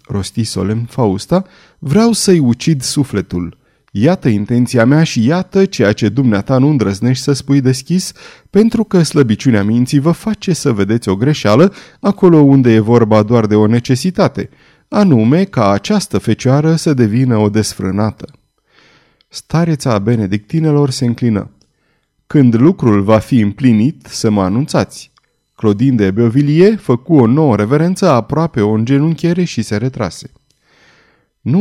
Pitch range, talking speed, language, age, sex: 105-155 Hz, 135 wpm, Romanian, 30-49, male